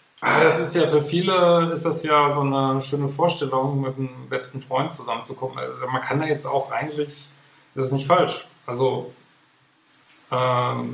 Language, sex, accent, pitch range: German, male, German, 115-135 Hz